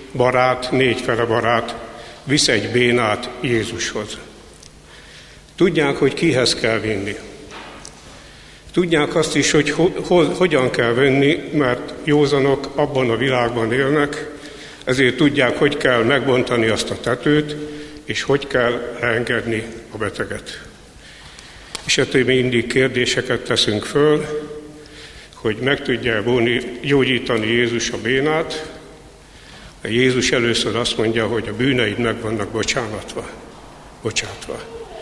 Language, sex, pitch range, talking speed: Hungarian, male, 120-145 Hz, 115 wpm